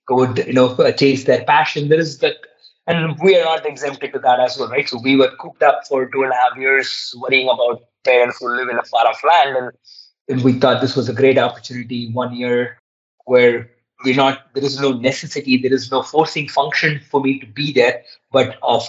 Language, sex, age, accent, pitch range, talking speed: English, male, 30-49, Indian, 125-135 Hz, 220 wpm